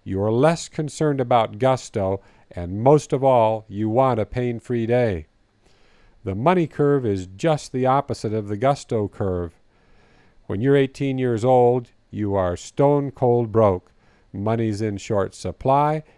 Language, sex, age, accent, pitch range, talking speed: English, male, 50-69, American, 105-130 Hz, 145 wpm